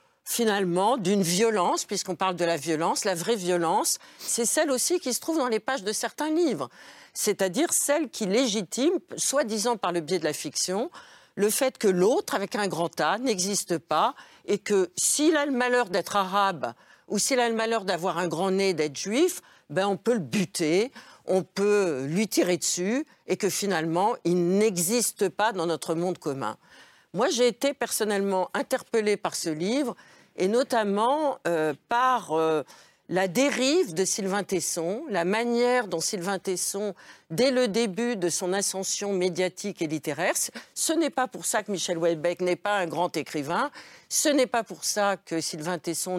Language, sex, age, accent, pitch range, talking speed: French, female, 50-69, French, 175-240 Hz, 180 wpm